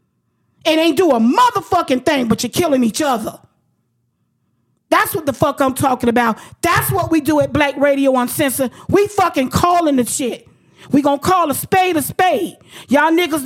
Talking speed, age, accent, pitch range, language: 185 wpm, 40-59, American, 245-320 Hz, English